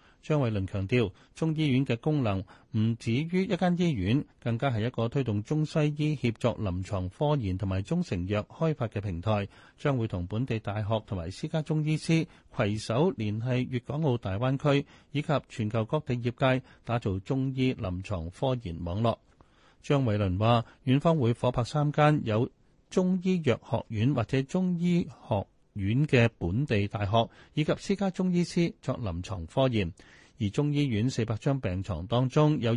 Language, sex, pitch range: Chinese, male, 105-145 Hz